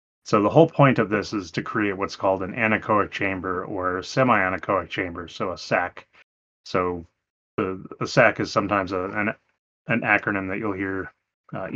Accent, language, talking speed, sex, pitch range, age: American, English, 170 wpm, male, 95-110 Hz, 30-49